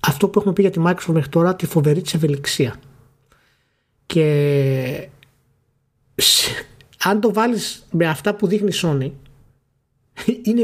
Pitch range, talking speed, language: 135-180 Hz, 135 wpm, Greek